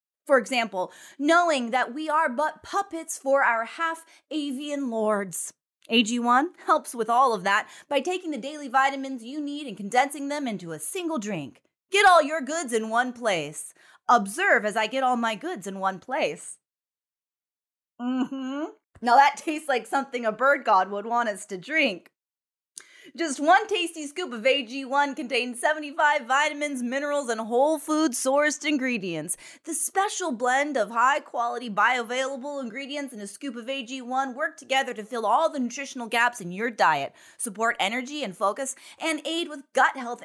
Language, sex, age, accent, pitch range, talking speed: English, female, 20-39, American, 235-320 Hz, 165 wpm